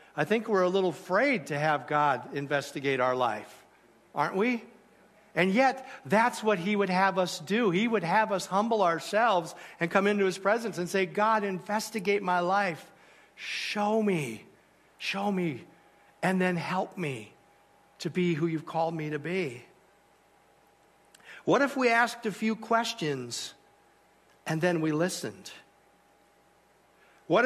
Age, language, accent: 60-79, English, American